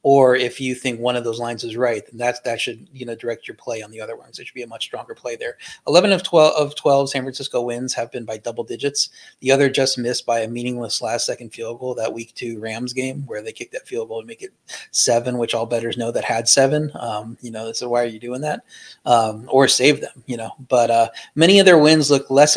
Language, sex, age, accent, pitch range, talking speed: English, male, 30-49, American, 120-145 Hz, 265 wpm